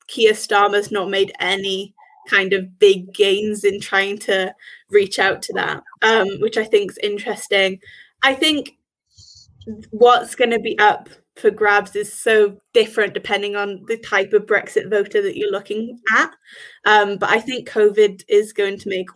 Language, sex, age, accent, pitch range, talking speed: English, female, 20-39, British, 200-235 Hz, 170 wpm